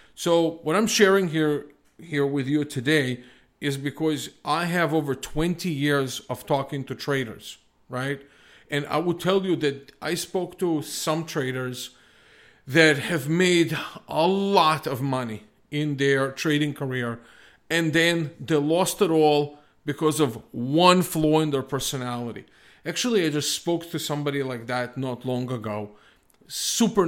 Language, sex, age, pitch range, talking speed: English, male, 40-59, 135-160 Hz, 150 wpm